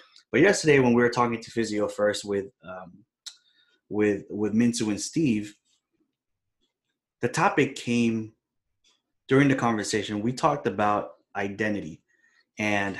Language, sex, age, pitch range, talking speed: English, male, 20-39, 100-120 Hz, 125 wpm